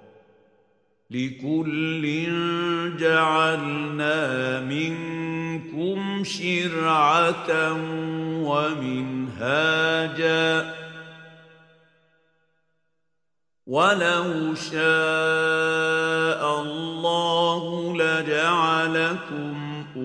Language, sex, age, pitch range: Indonesian, male, 50-69, 150-165 Hz